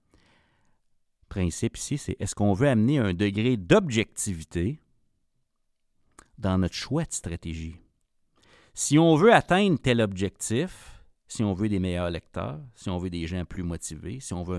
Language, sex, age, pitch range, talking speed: French, male, 50-69, 85-110 Hz, 150 wpm